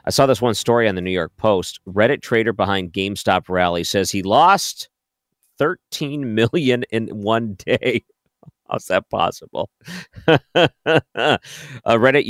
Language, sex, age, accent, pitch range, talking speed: English, male, 50-69, American, 90-120 Hz, 135 wpm